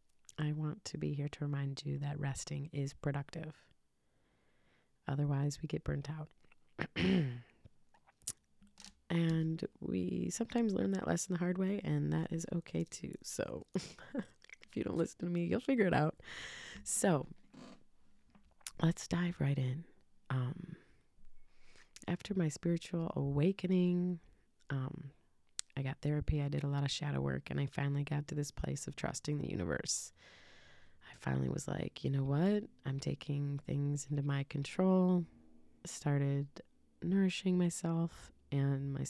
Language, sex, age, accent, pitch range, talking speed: English, female, 30-49, American, 140-170 Hz, 140 wpm